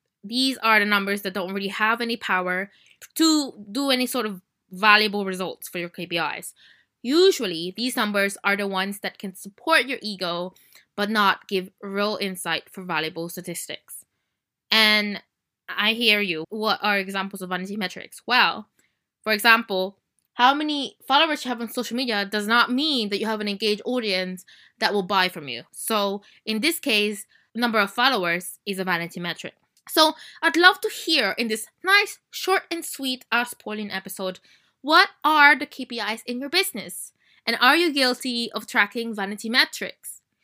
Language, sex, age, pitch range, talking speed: English, female, 20-39, 195-250 Hz, 170 wpm